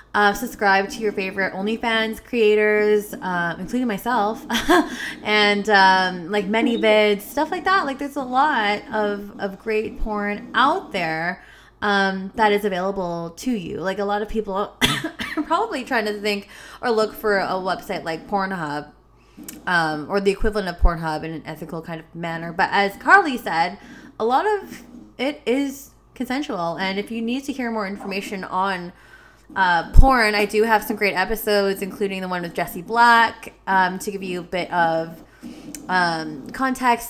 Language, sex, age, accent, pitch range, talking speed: English, female, 20-39, American, 185-230 Hz, 170 wpm